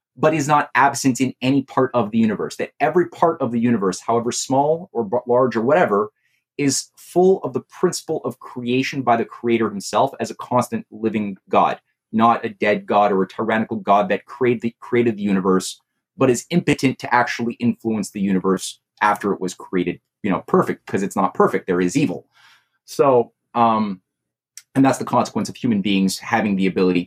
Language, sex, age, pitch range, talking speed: English, male, 30-49, 100-135 Hz, 190 wpm